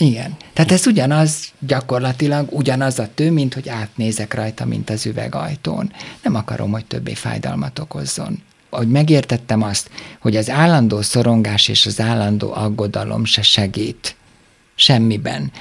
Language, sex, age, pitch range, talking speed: Hungarian, male, 50-69, 110-130 Hz, 135 wpm